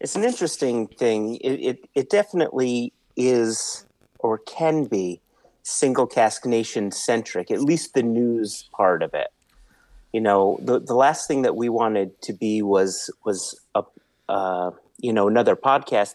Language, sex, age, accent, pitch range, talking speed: English, male, 40-59, American, 100-130 Hz, 155 wpm